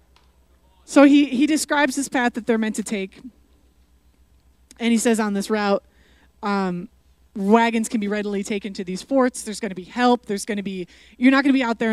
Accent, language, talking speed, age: American, English, 210 wpm, 20-39